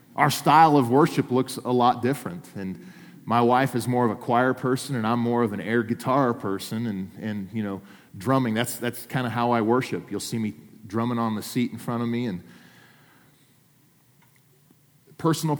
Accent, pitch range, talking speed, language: American, 115-145 Hz, 190 wpm, English